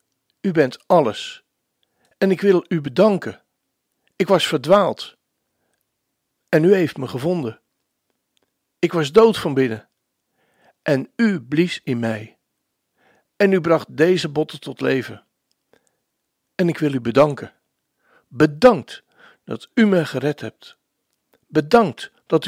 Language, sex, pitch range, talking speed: Dutch, male, 140-190 Hz, 125 wpm